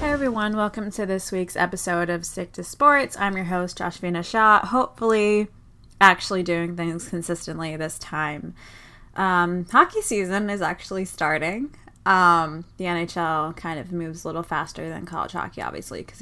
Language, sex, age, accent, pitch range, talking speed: English, female, 20-39, American, 170-205 Hz, 165 wpm